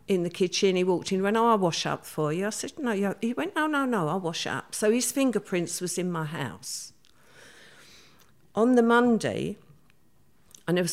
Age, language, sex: 50-69, English, female